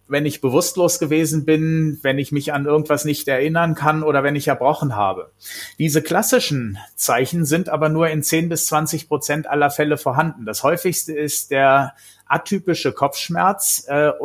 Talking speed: 165 wpm